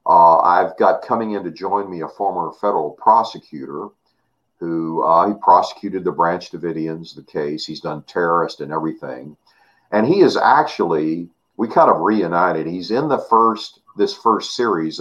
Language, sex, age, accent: English, male, 50-69, American